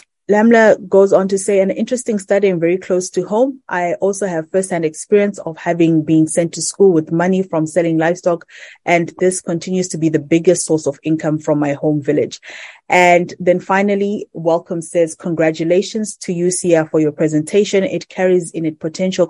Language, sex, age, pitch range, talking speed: English, female, 20-39, 160-190 Hz, 185 wpm